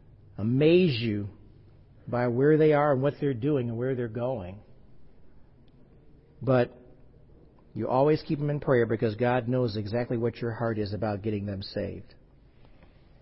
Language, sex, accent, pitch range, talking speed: English, male, American, 120-190 Hz, 150 wpm